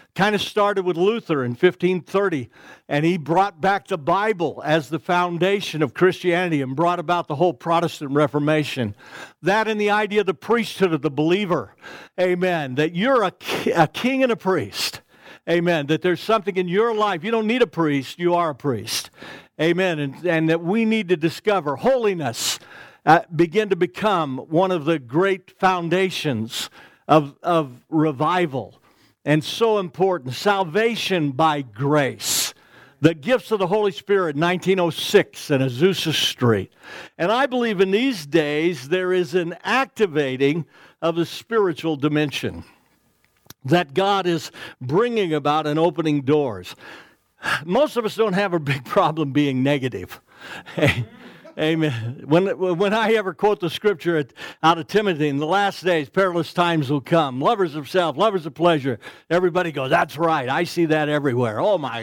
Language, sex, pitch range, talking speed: English, male, 150-195 Hz, 160 wpm